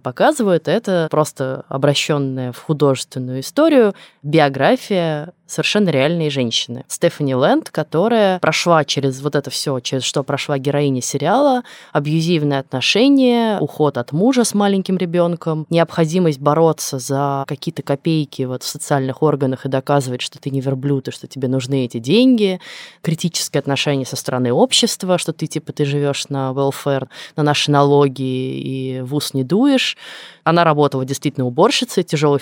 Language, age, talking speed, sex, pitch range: Russian, 20-39, 145 wpm, female, 140-175 Hz